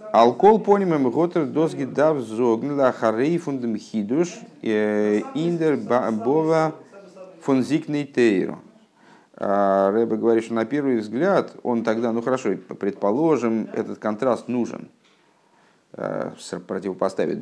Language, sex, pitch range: Russian, male, 105-155 Hz